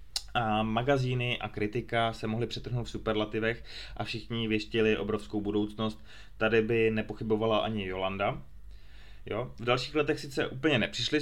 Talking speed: 140 wpm